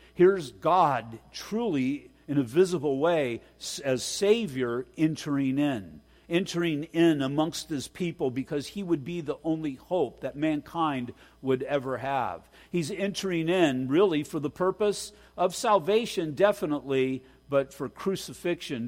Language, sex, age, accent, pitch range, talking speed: English, male, 50-69, American, 125-160 Hz, 130 wpm